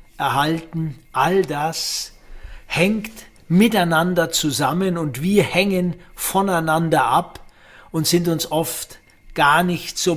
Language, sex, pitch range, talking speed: German, male, 140-170 Hz, 105 wpm